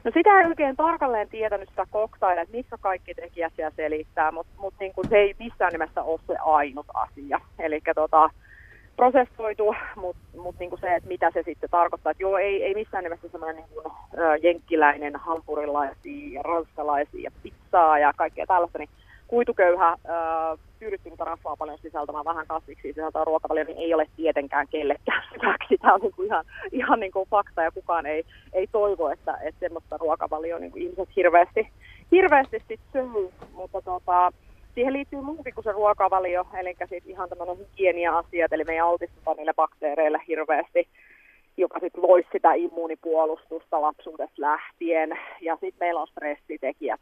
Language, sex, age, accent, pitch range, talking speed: Finnish, female, 30-49, native, 155-200 Hz, 160 wpm